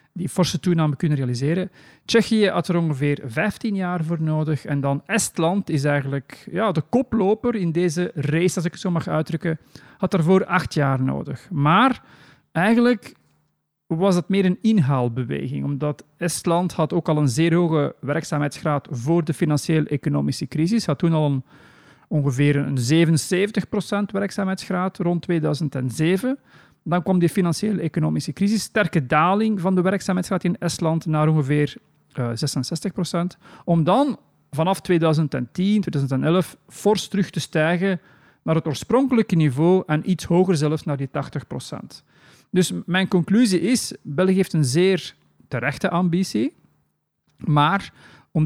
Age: 40-59